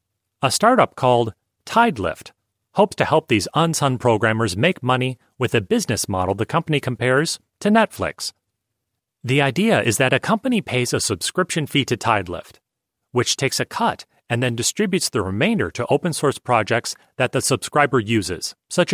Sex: male